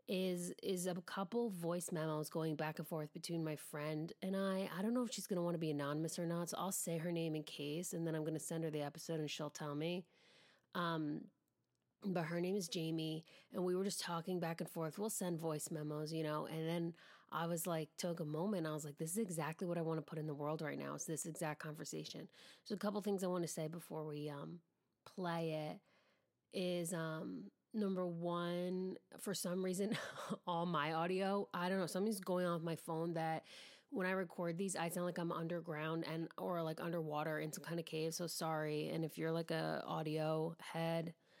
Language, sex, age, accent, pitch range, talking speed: English, female, 30-49, American, 155-180 Hz, 225 wpm